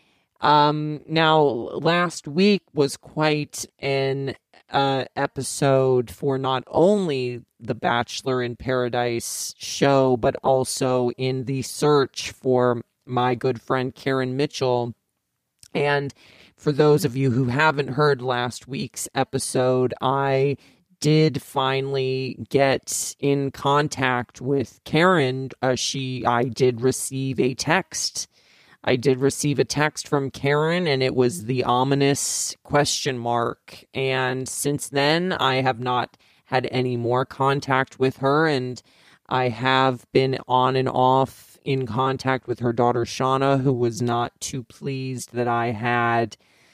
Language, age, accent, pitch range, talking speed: English, 40-59, American, 125-140 Hz, 130 wpm